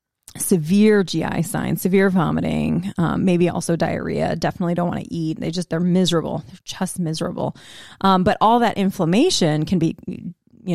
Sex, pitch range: female, 165-195 Hz